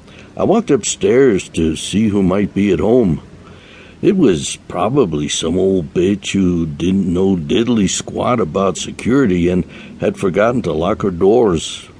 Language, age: English, 60-79